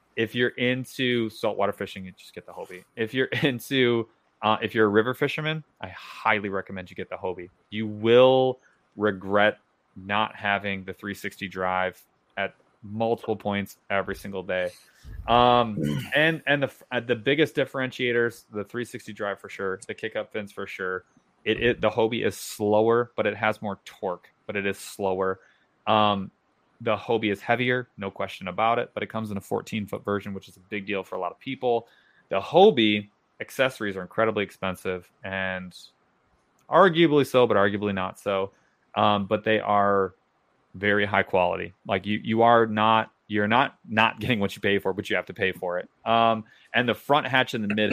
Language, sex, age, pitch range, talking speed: English, male, 20-39, 100-115 Hz, 185 wpm